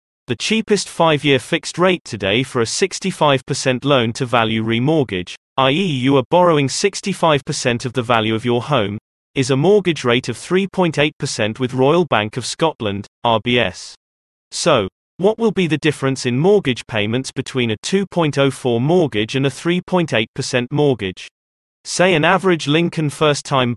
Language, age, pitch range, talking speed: English, 30-49, 120-165 Hz, 140 wpm